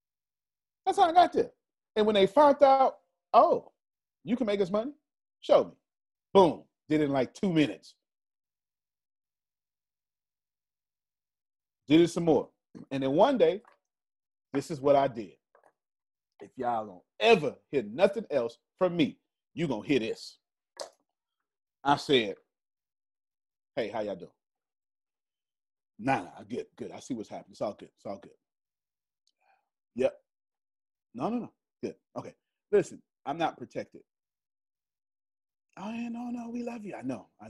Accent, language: American, English